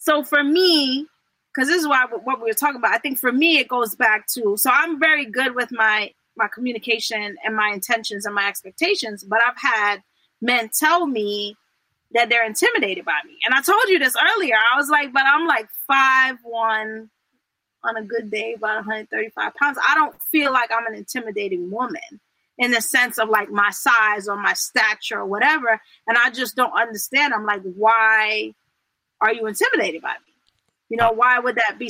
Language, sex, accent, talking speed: English, female, American, 200 wpm